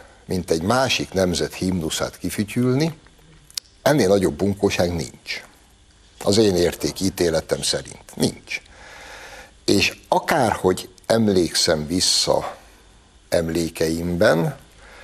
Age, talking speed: 60-79, 85 wpm